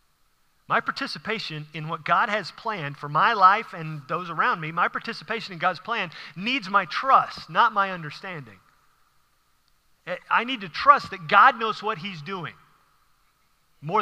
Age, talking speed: 40-59, 155 wpm